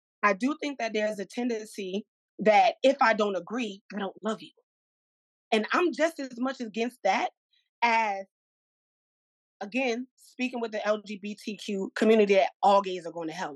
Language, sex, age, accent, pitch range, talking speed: English, female, 20-39, American, 200-250 Hz, 165 wpm